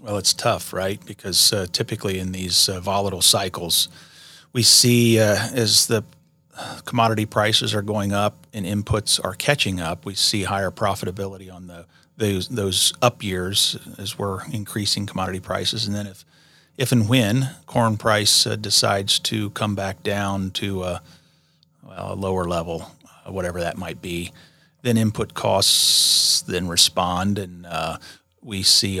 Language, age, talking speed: English, 40-59, 155 wpm